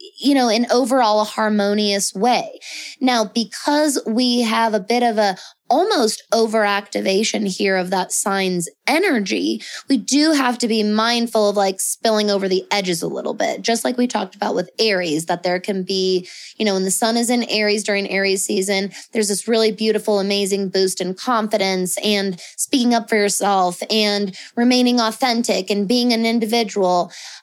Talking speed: 175 wpm